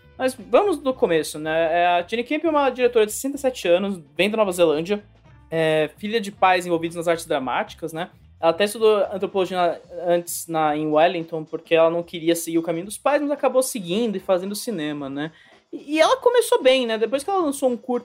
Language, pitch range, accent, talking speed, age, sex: English, 165-240 Hz, Brazilian, 205 wpm, 20-39, male